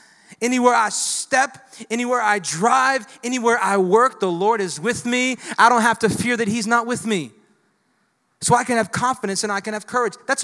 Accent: American